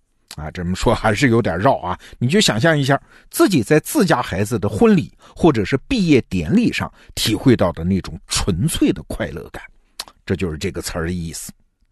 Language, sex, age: Chinese, male, 50-69